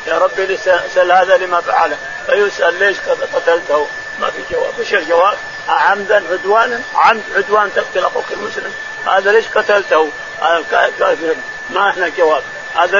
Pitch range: 180-270 Hz